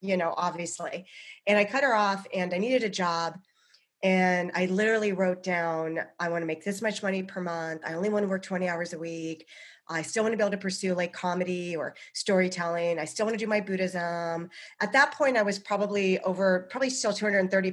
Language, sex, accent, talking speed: English, female, American, 205 wpm